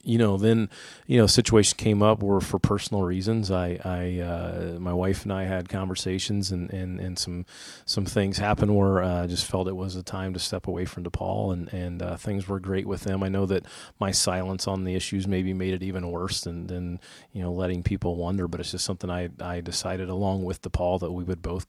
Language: English